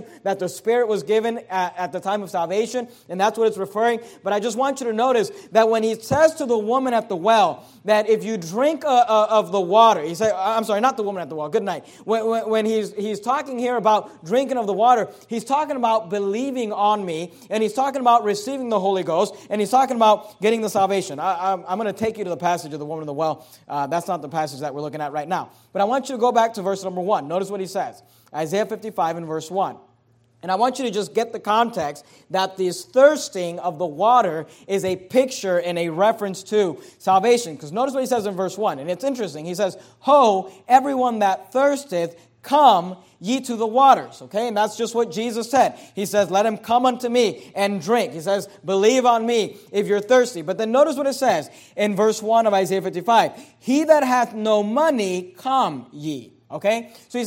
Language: English